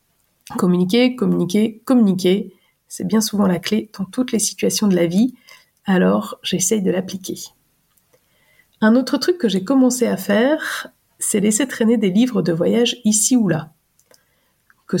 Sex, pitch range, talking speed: female, 190-245 Hz, 150 wpm